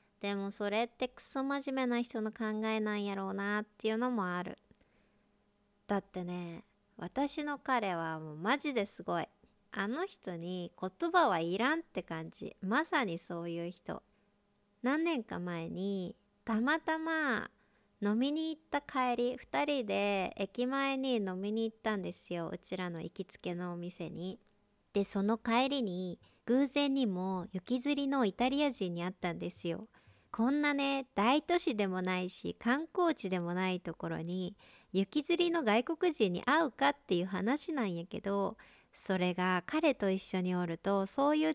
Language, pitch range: Japanese, 185-255 Hz